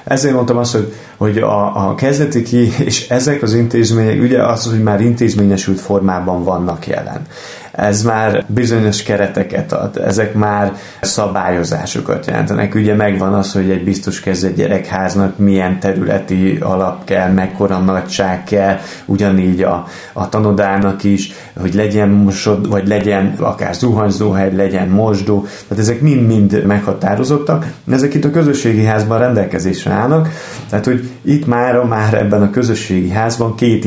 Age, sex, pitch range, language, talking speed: 30-49, male, 95-110 Hz, Hungarian, 140 wpm